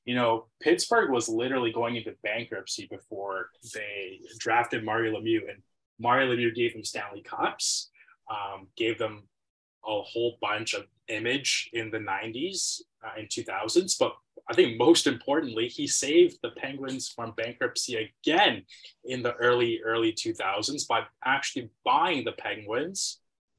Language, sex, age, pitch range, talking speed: English, male, 20-39, 115-170 Hz, 140 wpm